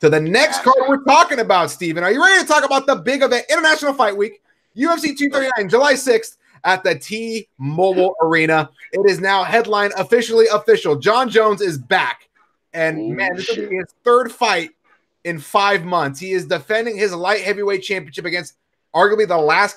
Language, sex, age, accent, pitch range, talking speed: English, male, 30-49, American, 155-205 Hz, 185 wpm